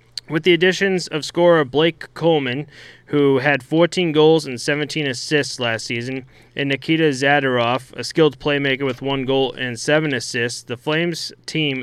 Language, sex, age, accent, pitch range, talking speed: English, male, 20-39, American, 125-155 Hz, 155 wpm